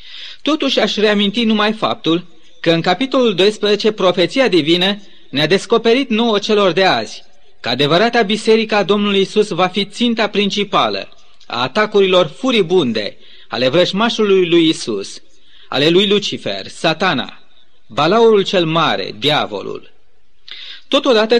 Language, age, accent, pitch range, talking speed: Romanian, 30-49, native, 175-225 Hz, 120 wpm